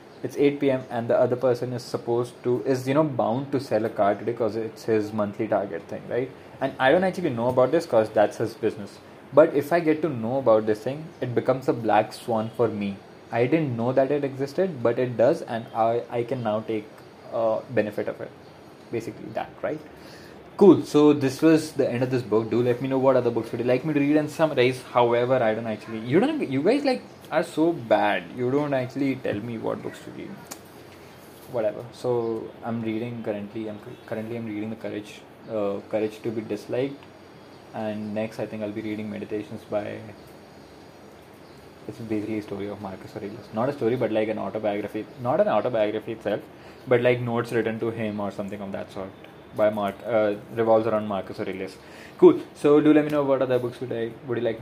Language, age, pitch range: English, 20-39, 110-130 Hz